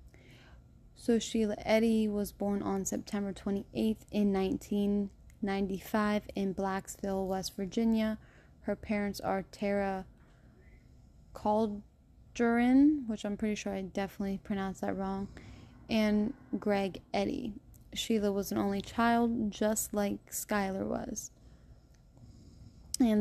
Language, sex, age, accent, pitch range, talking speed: English, female, 20-39, American, 190-215 Hz, 105 wpm